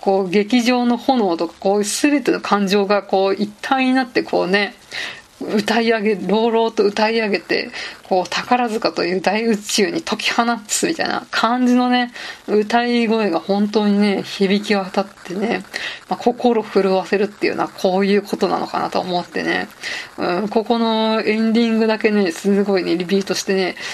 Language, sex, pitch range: Japanese, female, 190-230 Hz